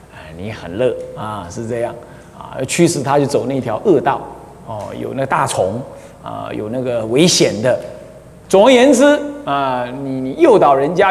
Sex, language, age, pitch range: male, Chinese, 30-49, 130-180 Hz